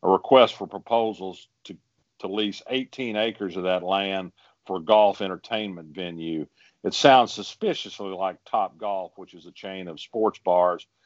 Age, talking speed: 50-69, 165 wpm